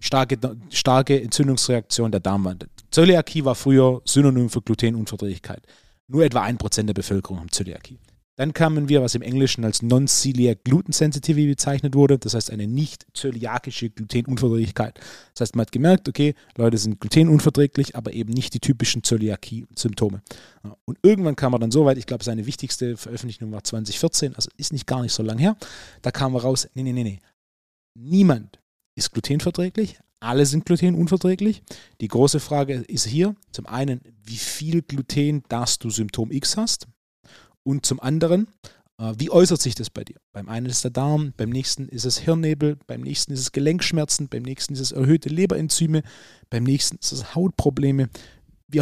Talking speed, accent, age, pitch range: 170 wpm, German, 30-49, 115-150 Hz